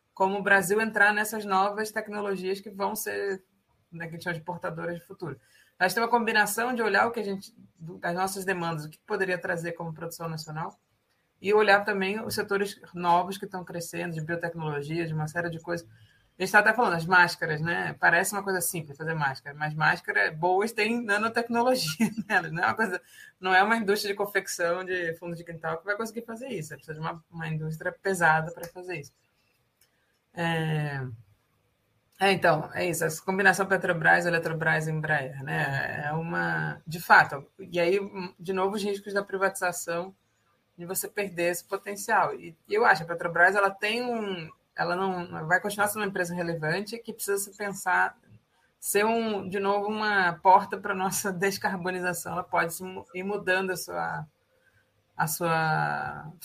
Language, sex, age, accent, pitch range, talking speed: Portuguese, female, 20-39, Brazilian, 165-200 Hz, 180 wpm